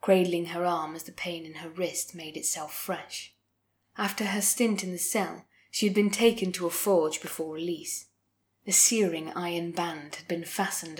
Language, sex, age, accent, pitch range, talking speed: English, female, 20-39, British, 160-190 Hz, 185 wpm